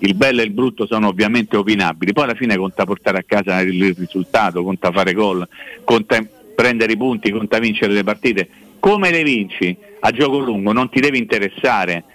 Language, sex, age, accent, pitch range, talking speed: Italian, male, 50-69, native, 115-155 Hz, 190 wpm